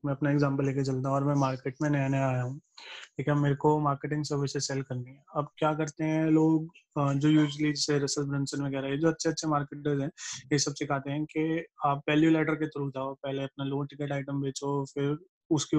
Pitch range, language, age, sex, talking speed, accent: 140-160 Hz, Hindi, 20-39, male, 130 wpm, native